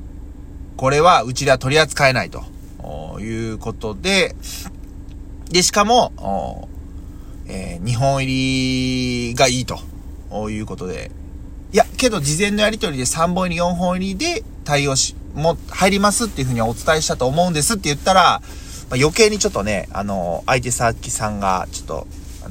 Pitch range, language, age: 95-150 Hz, Japanese, 20-39